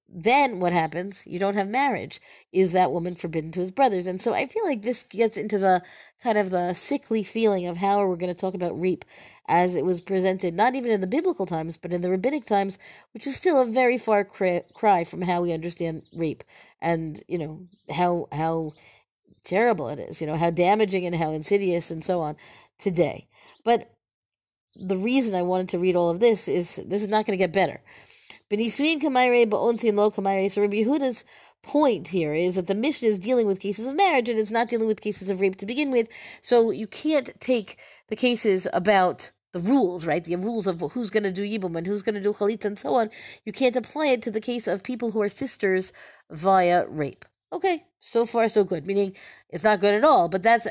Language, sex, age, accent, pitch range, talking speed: English, female, 50-69, American, 180-230 Hz, 215 wpm